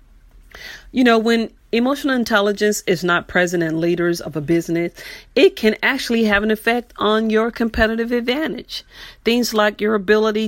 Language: English